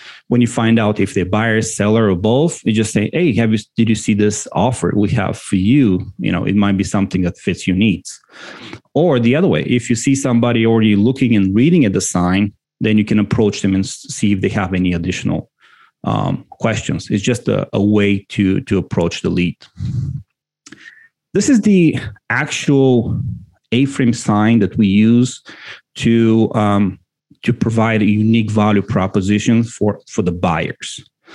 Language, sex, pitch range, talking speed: English, male, 100-125 Hz, 180 wpm